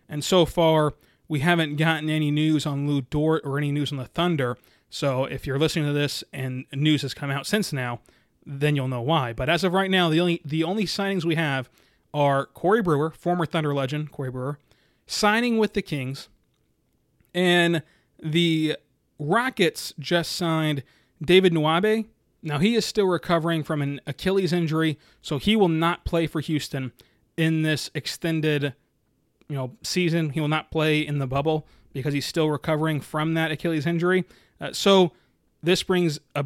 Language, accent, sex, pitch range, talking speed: English, American, male, 140-165 Hz, 175 wpm